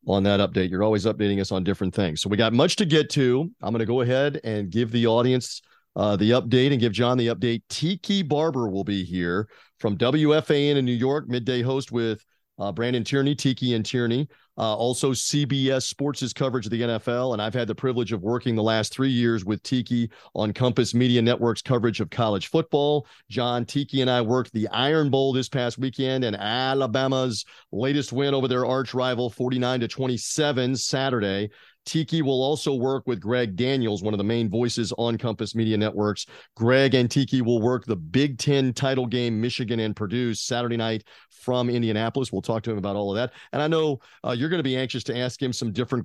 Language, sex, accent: English, male, American